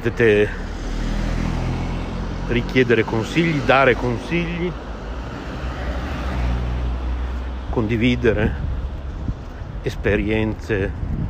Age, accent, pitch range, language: 60-79, native, 85-120 Hz, Italian